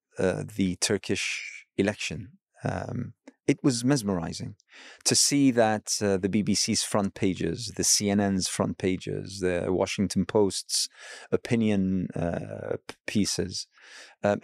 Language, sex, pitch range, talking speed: English, male, 95-115 Hz, 110 wpm